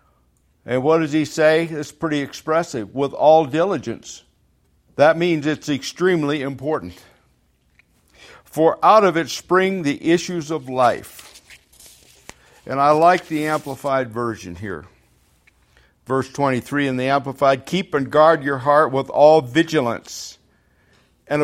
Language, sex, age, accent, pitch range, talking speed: English, male, 60-79, American, 110-155 Hz, 130 wpm